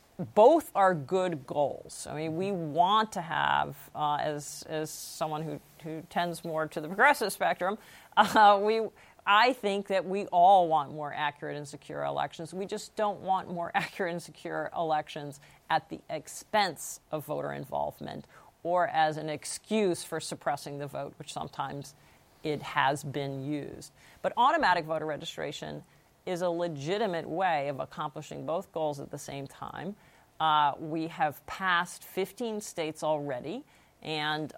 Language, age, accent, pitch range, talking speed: English, 50-69, American, 150-180 Hz, 155 wpm